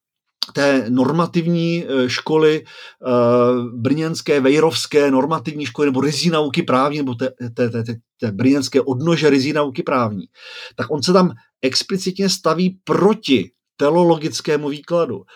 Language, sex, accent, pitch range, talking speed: Czech, male, native, 135-185 Hz, 120 wpm